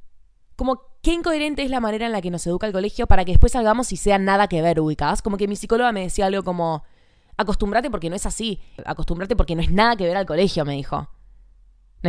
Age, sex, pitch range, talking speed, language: 20-39, female, 155-210 Hz, 240 wpm, Spanish